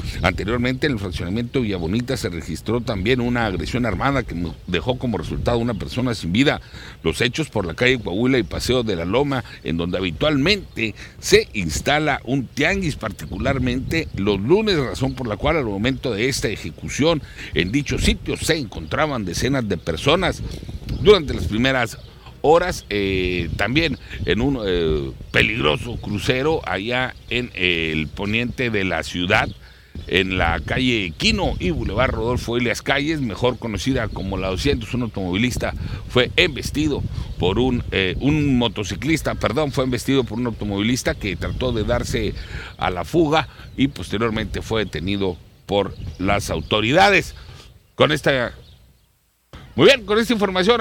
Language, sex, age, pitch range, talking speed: Spanish, male, 60-79, 95-135 Hz, 145 wpm